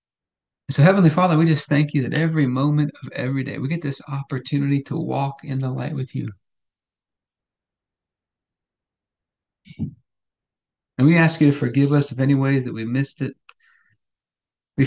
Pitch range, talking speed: 130-150 Hz, 155 wpm